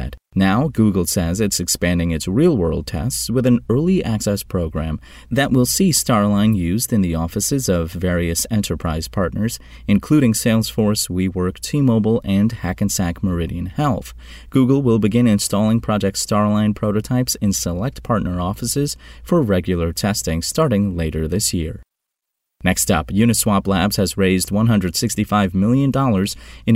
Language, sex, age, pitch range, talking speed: English, male, 30-49, 90-115 Hz, 135 wpm